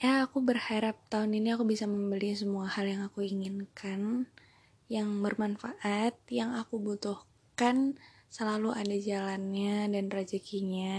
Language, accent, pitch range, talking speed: Indonesian, native, 195-220 Hz, 125 wpm